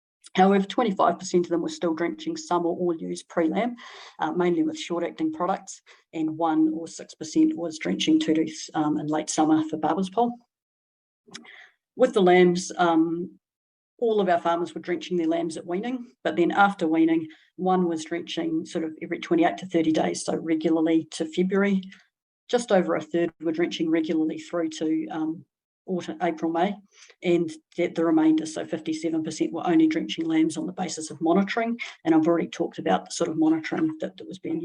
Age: 50-69